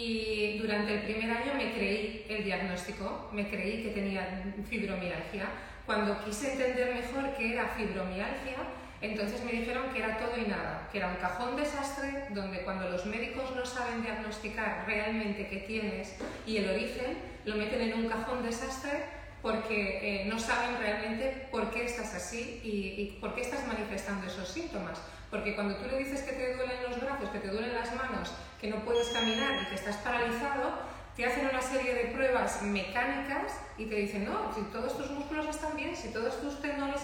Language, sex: Spanish, female